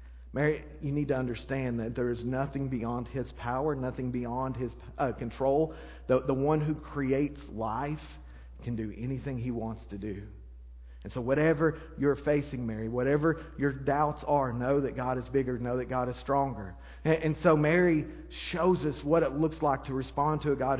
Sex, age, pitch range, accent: male, 40-59, 95-145 Hz, American